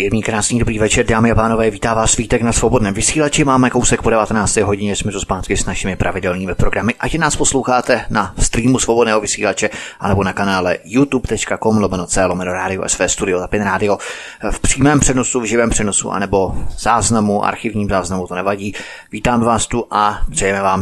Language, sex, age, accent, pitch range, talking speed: Czech, male, 30-49, native, 105-125 Hz, 165 wpm